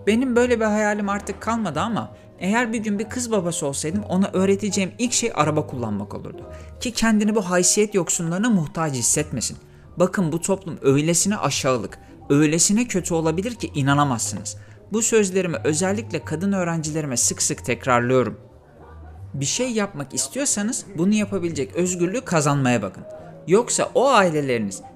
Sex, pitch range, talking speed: male, 125-210 Hz, 140 wpm